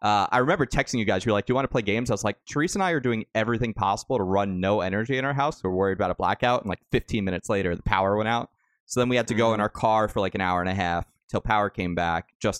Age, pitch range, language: 30-49, 95-120 Hz, English